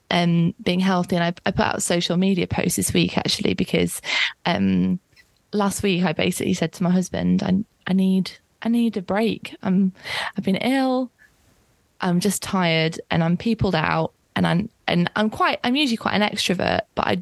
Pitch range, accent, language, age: 175-210 Hz, British, English, 20-39